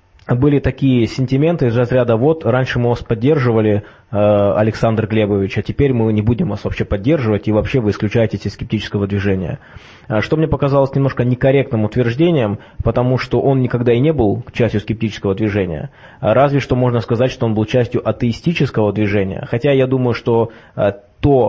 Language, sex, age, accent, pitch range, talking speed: Russian, male, 20-39, native, 105-130 Hz, 160 wpm